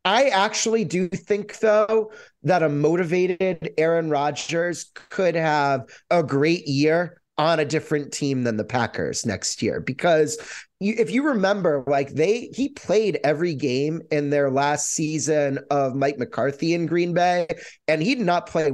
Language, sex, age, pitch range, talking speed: English, male, 30-49, 140-180 Hz, 160 wpm